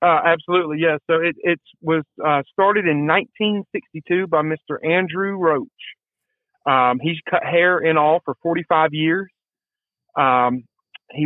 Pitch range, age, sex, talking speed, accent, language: 150-175 Hz, 40-59, male, 145 wpm, American, English